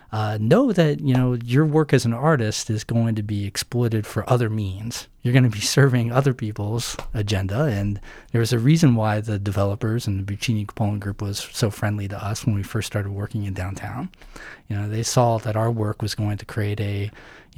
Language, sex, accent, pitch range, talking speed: English, male, American, 105-125 Hz, 215 wpm